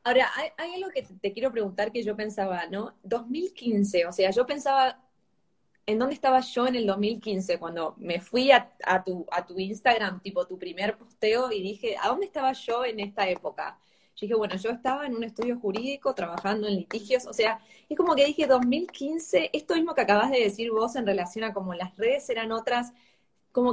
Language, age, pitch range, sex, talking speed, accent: Spanish, 20-39, 195-255 Hz, female, 200 wpm, Argentinian